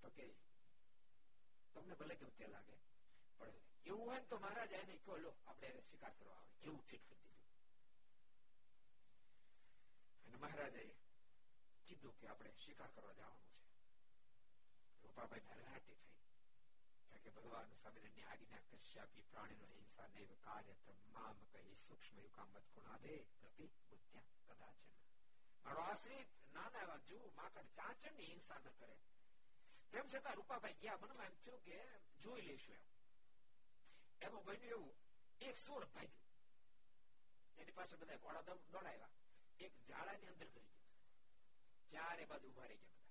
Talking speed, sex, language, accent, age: 55 wpm, male, Gujarati, native, 60-79